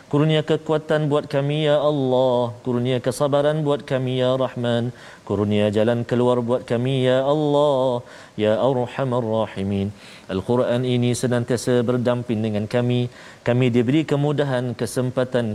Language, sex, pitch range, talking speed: Malayalam, male, 110-150 Hz, 145 wpm